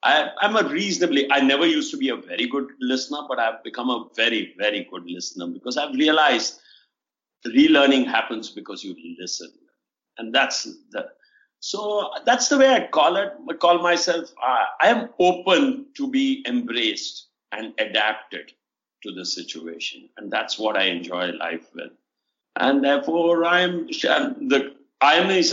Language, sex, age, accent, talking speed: Hindi, male, 50-69, native, 155 wpm